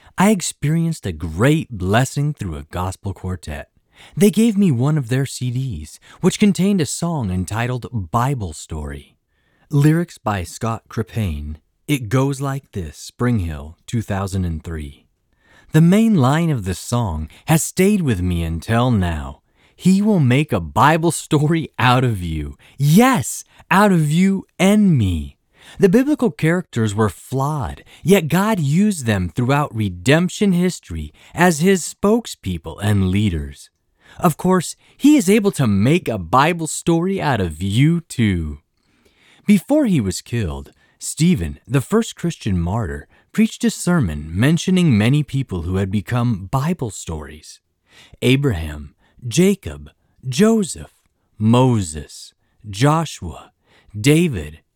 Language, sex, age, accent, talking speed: English, male, 30-49, American, 130 wpm